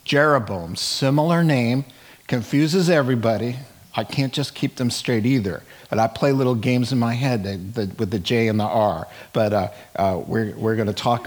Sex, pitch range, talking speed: male, 110-135 Hz, 175 wpm